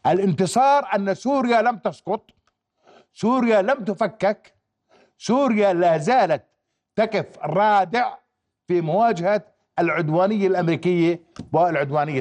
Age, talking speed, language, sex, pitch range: 50-69, 90 wpm, Arabic, male, 160-225 Hz